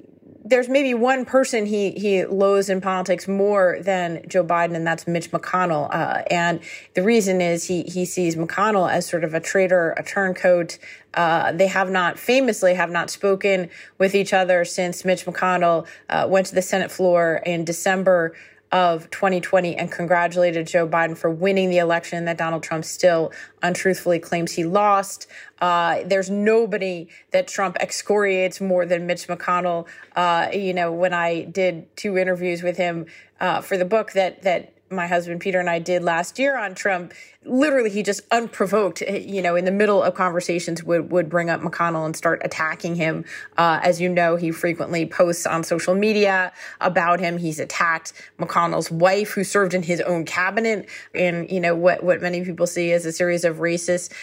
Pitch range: 170-195 Hz